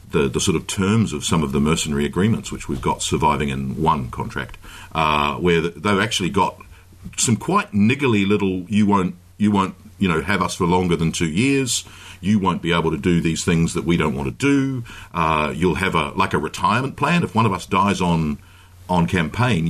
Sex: male